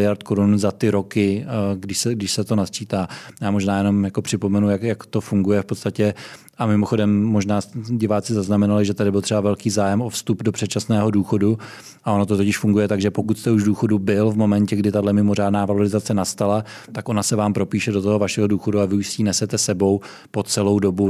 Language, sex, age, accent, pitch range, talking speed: Czech, male, 20-39, native, 100-110 Hz, 210 wpm